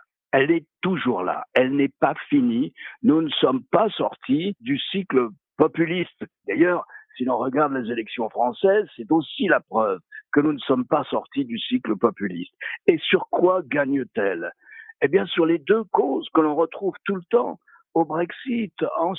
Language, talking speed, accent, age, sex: French, 170 wpm, French, 60-79, male